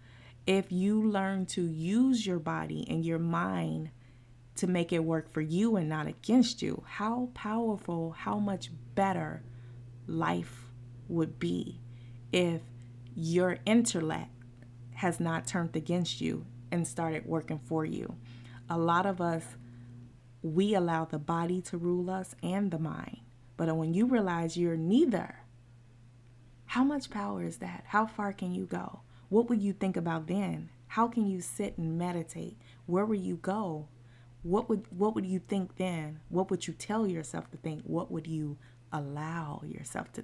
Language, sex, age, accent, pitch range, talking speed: English, female, 20-39, American, 120-185 Hz, 160 wpm